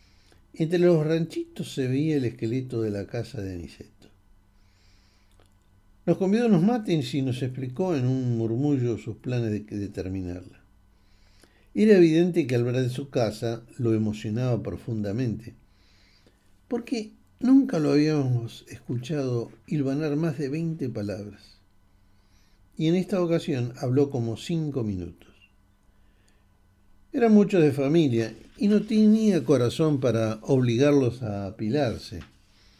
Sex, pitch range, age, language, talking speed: male, 100-140 Hz, 60-79, Spanish, 130 wpm